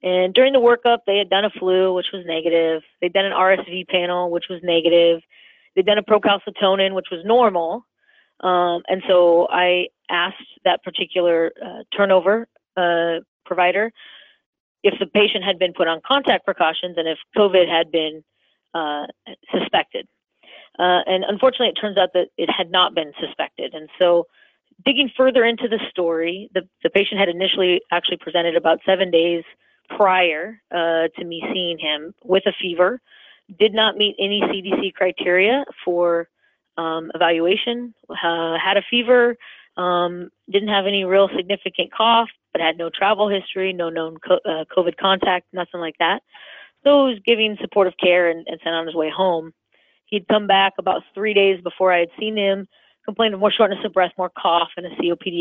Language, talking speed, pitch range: English, 175 wpm, 170-205 Hz